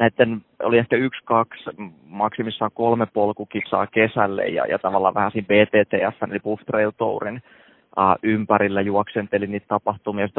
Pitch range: 100-115 Hz